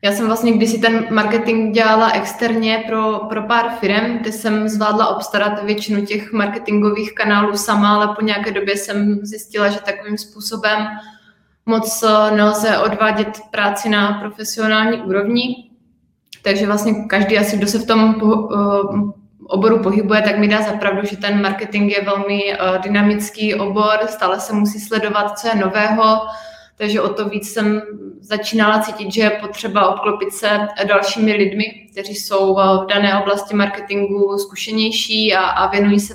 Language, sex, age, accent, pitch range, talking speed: Czech, female, 20-39, native, 200-215 Hz, 150 wpm